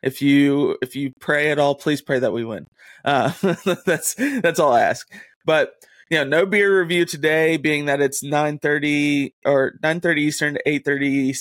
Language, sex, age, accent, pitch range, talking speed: English, male, 20-39, American, 135-160 Hz, 175 wpm